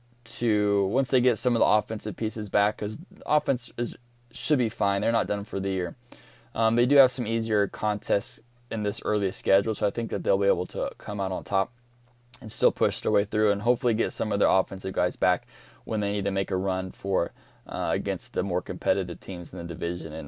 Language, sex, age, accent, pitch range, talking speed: English, male, 20-39, American, 105-125 Hz, 235 wpm